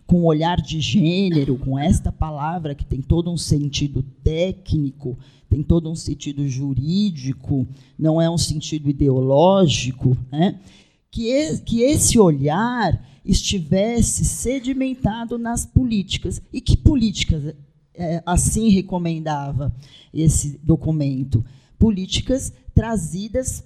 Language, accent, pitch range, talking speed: Portuguese, Brazilian, 140-200 Hz, 100 wpm